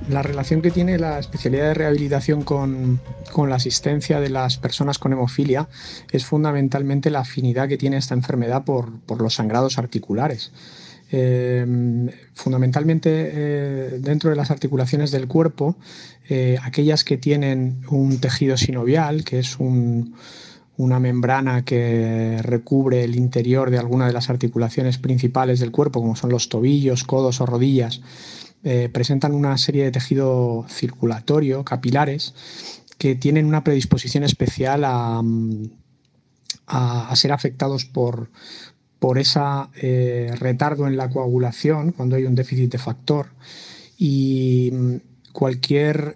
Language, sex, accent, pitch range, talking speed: Spanish, male, Spanish, 125-140 Hz, 135 wpm